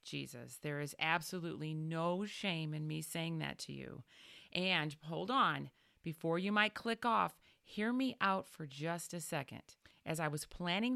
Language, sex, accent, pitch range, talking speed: English, female, American, 160-220 Hz, 170 wpm